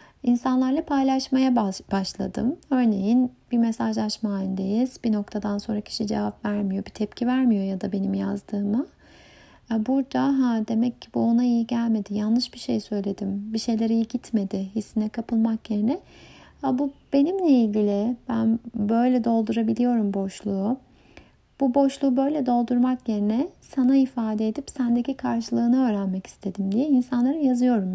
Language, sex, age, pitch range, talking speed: Turkish, female, 30-49, 205-250 Hz, 135 wpm